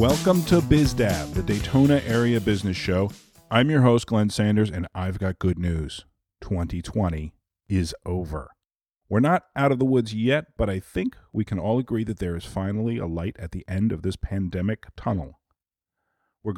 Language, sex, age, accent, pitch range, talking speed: English, male, 40-59, American, 90-115 Hz, 175 wpm